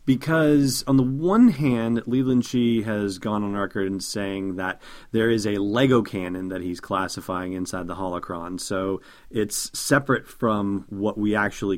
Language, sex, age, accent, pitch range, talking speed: English, male, 30-49, American, 100-125 Hz, 165 wpm